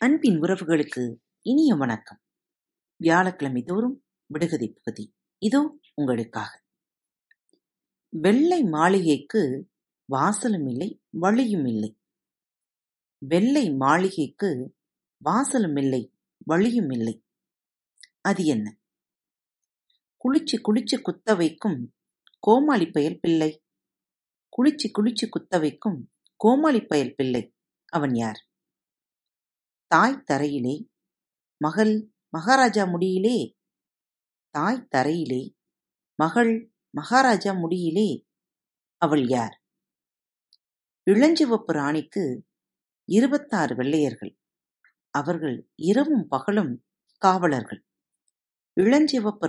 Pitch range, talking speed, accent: 140-230 Hz, 70 wpm, native